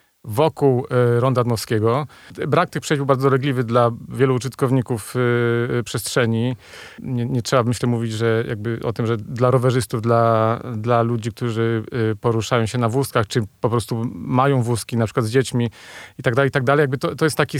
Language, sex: Polish, male